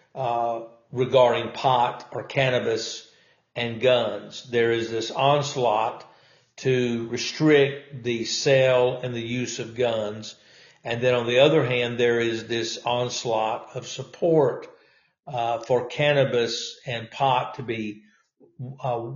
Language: English